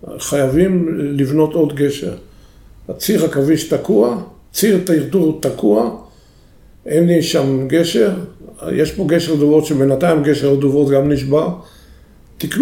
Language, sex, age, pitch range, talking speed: Hebrew, male, 50-69, 135-160 Hz, 110 wpm